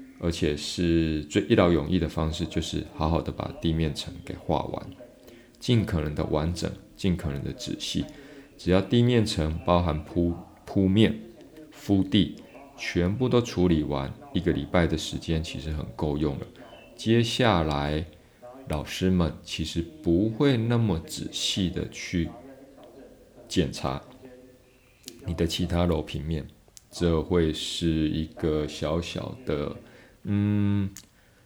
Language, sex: Chinese, male